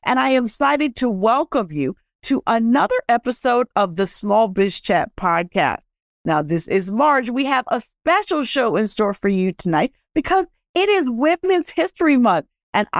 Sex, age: female, 50-69